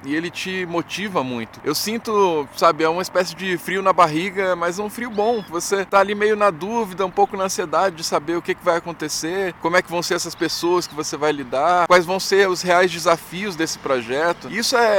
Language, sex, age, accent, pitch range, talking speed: Portuguese, male, 10-29, Brazilian, 160-200 Hz, 230 wpm